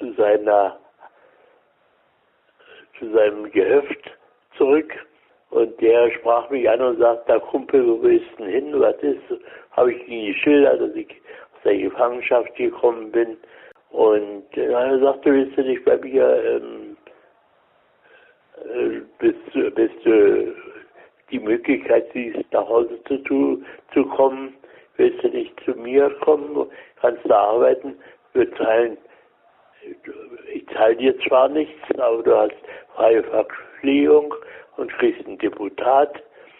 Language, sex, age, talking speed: German, male, 60-79, 130 wpm